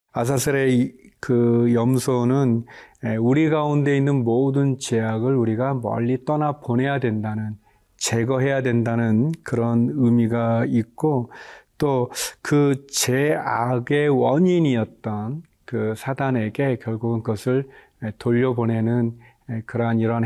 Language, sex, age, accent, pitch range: Korean, male, 40-59, native, 115-135 Hz